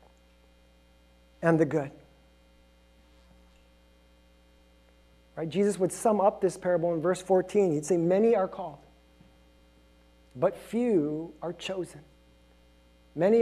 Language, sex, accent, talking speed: English, male, American, 105 wpm